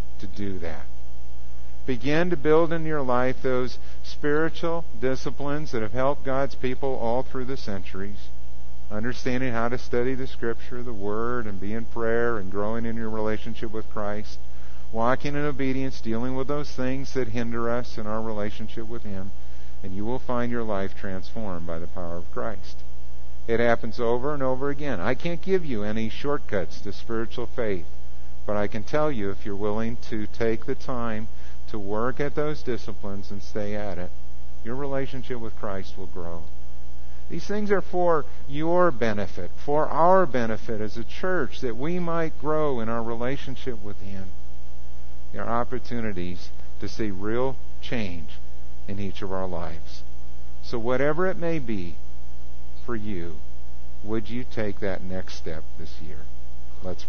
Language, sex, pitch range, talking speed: English, male, 80-130 Hz, 165 wpm